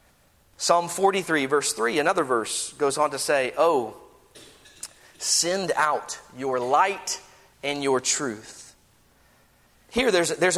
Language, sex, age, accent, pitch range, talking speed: English, male, 40-59, American, 175-260 Hz, 120 wpm